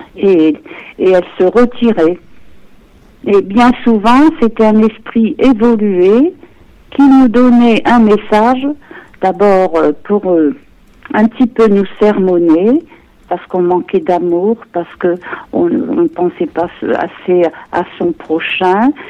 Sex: female